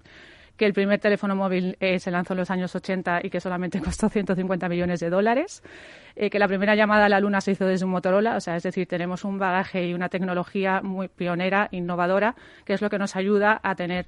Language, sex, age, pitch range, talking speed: Spanish, female, 30-49, 180-200 Hz, 230 wpm